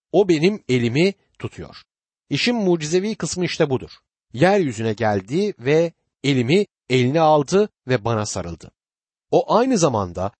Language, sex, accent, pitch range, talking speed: Turkish, male, native, 120-180 Hz, 120 wpm